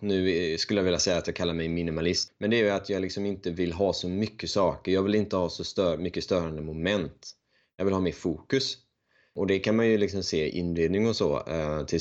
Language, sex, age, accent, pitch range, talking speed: Swedish, male, 20-39, native, 80-105 Hz, 250 wpm